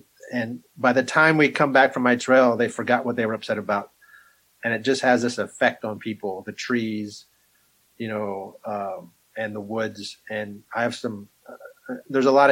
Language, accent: English, American